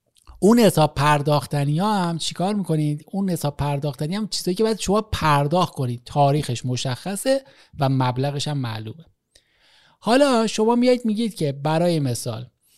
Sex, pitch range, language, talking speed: male, 140-185 Hz, Persian, 140 wpm